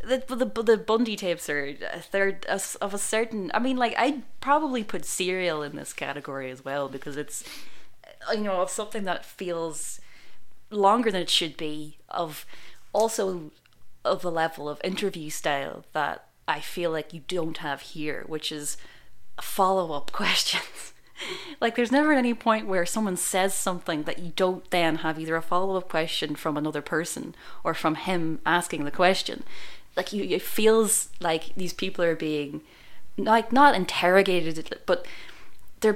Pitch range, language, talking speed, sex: 150-200 Hz, English, 165 wpm, female